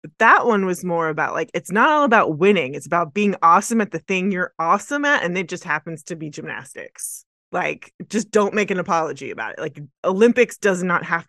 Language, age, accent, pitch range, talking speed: English, 20-39, American, 155-205 Hz, 225 wpm